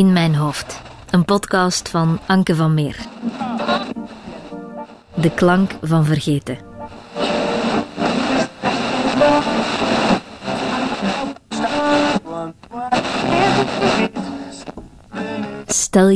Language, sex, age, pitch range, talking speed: Dutch, female, 20-39, 150-195 Hz, 50 wpm